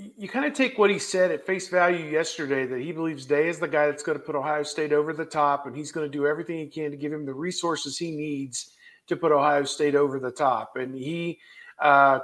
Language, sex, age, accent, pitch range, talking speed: English, male, 50-69, American, 150-180 Hz, 255 wpm